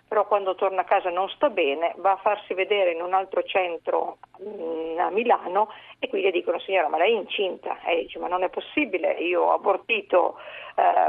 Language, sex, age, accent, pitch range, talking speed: Italian, female, 50-69, native, 180-275 Hz, 200 wpm